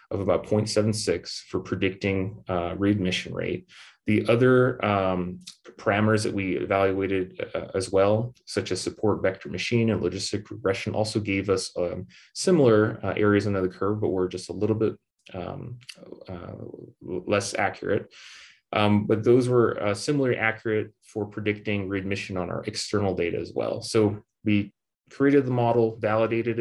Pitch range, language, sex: 95-115 Hz, English, male